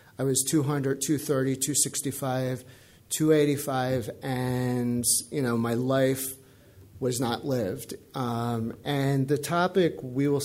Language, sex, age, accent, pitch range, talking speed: English, male, 40-59, American, 120-145 Hz, 115 wpm